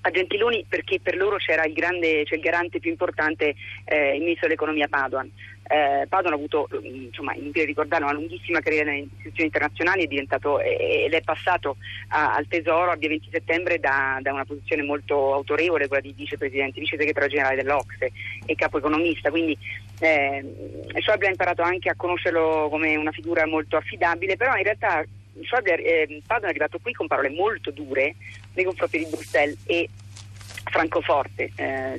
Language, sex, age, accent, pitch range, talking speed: Italian, female, 30-49, native, 140-170 Hz, 170 wpm